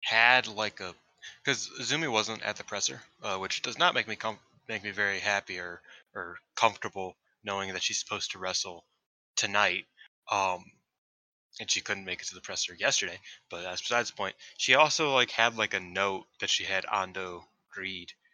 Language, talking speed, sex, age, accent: English, 190 wpm, male, 20-39, American